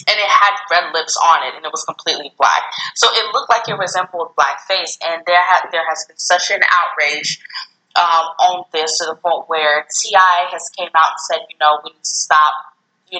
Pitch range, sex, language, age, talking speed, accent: 165-210 Hz, female, English, 20-39, 220 wpm, American